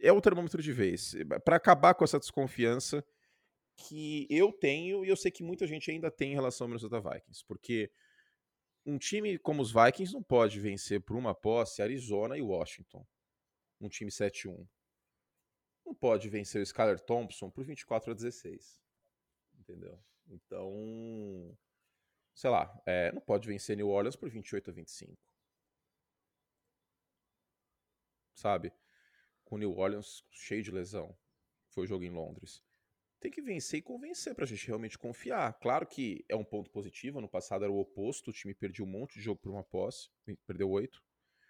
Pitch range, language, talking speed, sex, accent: 100-145 Hz, Portuguese, 165 wpm, male, Brazilian